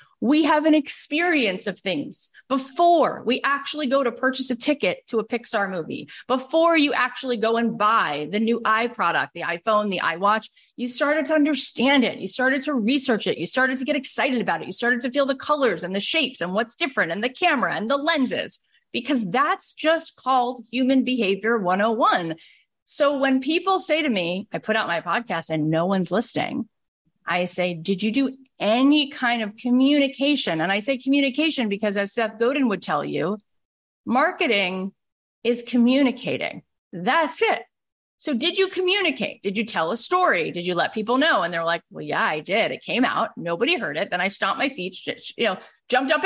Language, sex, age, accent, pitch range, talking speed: English, female, 30-49, American, 205-280 Hz, 195 wpm